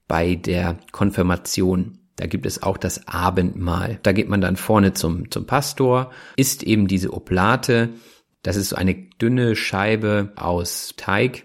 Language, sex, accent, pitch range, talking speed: German, male, German, 95-115 Hz, 150 wpm